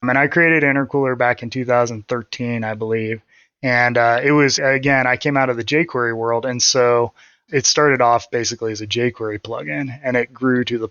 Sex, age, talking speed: male, 20-39, 200 wpm